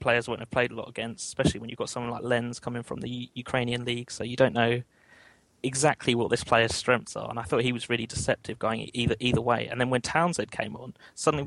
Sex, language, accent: male, English, British